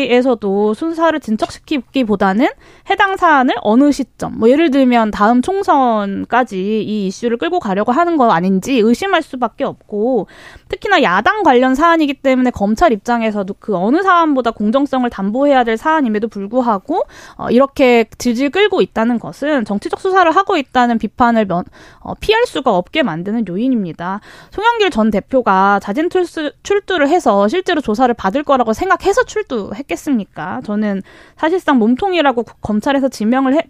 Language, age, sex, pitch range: Korean, 20-39, female, 220-315 Hz